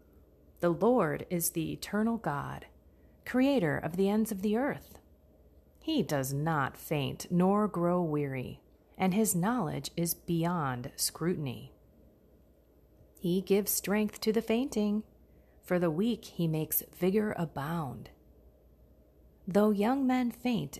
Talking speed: 125 wpm